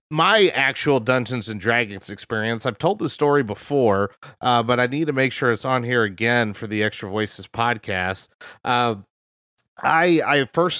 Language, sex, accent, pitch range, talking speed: English, male, American, 110-135 Hz, 170 wpm